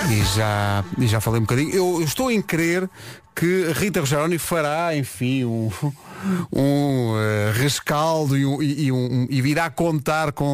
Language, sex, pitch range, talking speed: Portuguese, male, 110-135 Hz, 135 wpm